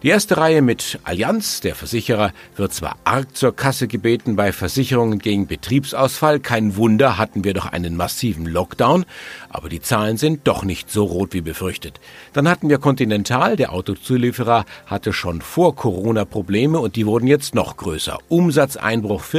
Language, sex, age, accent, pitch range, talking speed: German, male, 50-69, German, 95-135 Hz, 165 wpm